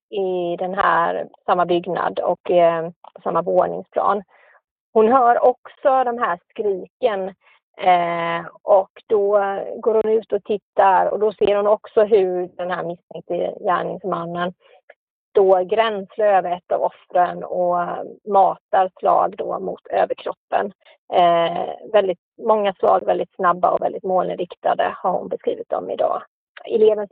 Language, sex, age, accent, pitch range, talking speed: English, female, 30-49, Swedish, 180-210 Hz, 130 wpm